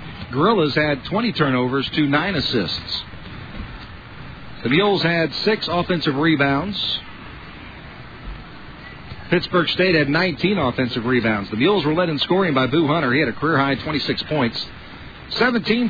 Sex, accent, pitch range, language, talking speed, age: male, American, 130-180 Hz, English, 130 wpm, 50-69